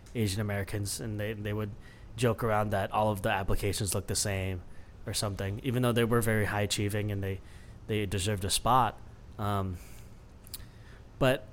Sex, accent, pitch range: male, American, 105-120 Hz